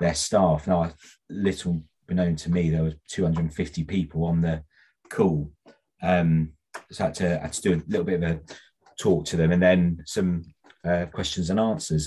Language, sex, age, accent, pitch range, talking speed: English, male, 30-49, British, 80-90 Hz, 190 wpm